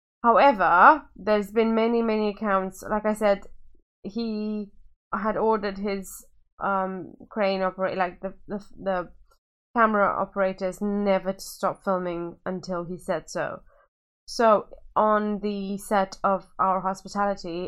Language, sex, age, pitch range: English, female, 20-39, 185-220 Hz